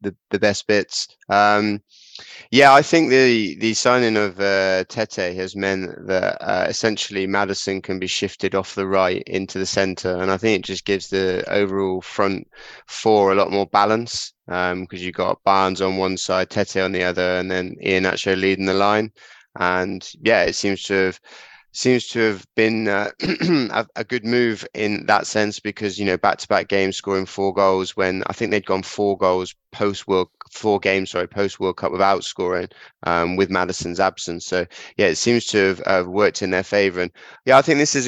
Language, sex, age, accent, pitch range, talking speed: English, male, 20-39, British, 95-105 Hz, 195 wpm